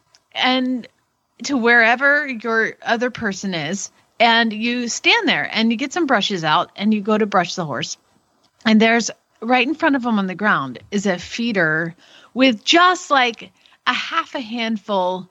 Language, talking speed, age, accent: English, 175 wpm, 40-59, American